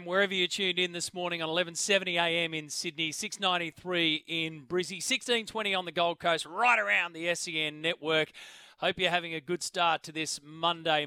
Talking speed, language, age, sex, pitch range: 175 wpm, English, 30-49, male, 160-185 Hz